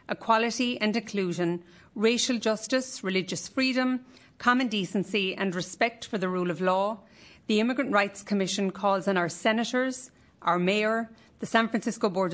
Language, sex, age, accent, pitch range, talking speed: English, female, 40-59, Irish, 185-225 Hz, 145 wpm